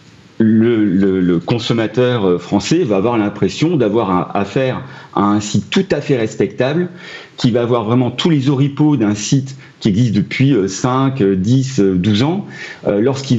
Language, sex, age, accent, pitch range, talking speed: French, male, 40-59, French, 100-140 Hz, 150 wpm